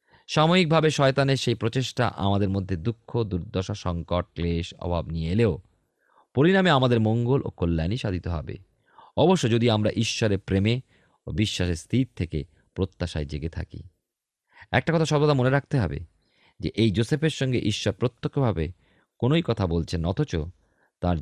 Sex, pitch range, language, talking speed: male, 90-120 Hz, Bengali, 140 wpm